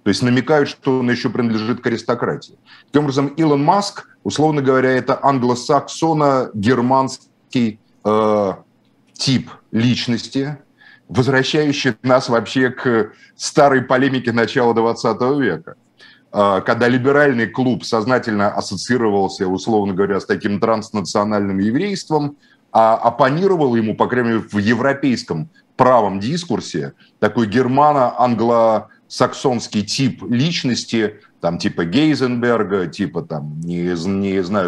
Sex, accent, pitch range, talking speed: male, native, 105-135 Hz, 105 wpm